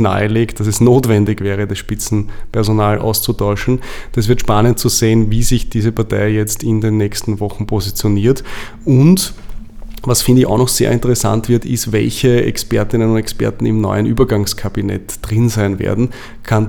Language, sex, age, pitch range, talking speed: German, male, 20-39, 105-115 Hz, 160 wpm